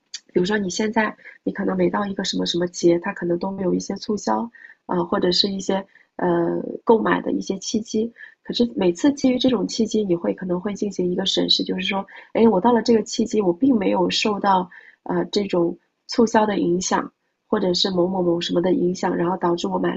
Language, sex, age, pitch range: Chinese, female, 30-49, 180-225 Hz